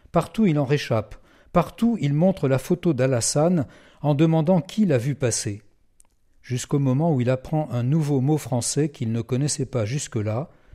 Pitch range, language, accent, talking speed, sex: 115-150 Hz, French, French, 165 wpm, male